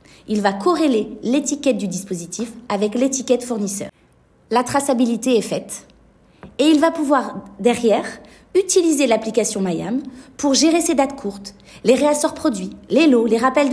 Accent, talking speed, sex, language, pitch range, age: French, 145 wpm, female, French, 220-290 Hz, 30-49